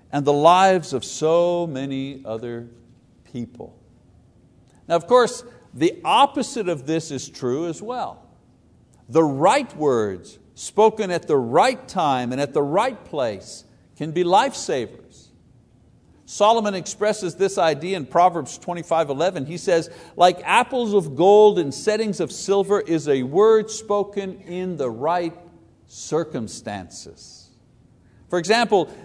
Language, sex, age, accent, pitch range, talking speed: English, male, 60-79, American, 150-205 Hz, 130 wpm